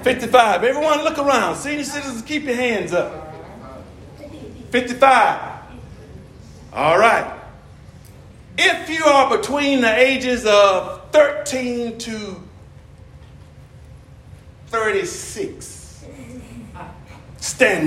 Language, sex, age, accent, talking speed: English, male, 40-59, American, 70 wpm